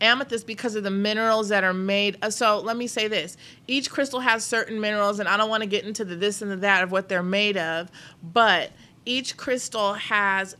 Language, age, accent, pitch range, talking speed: English, 30-49, American, 190-230 Hz, 225 wpm